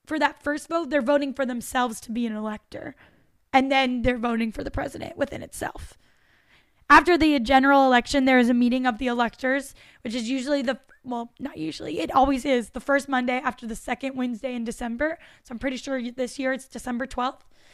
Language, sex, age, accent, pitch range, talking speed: English, female, 10-29, American, 245-285 Hz, 205 wpm